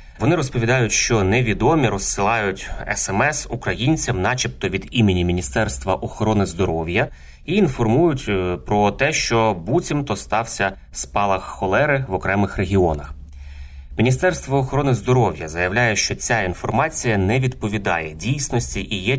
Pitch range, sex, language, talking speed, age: 95-120 Hz, male, Ukrainian, 115 wpm, 30-49